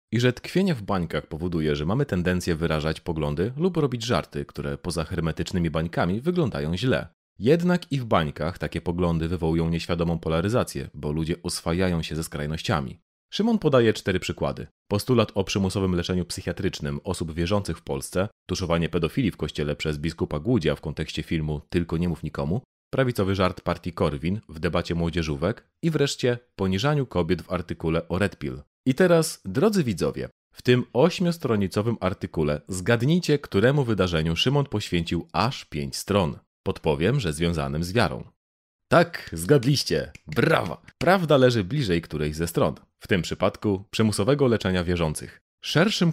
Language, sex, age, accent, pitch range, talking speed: Polish, male, 30-49, native, 80-120 Hz, 150 wpm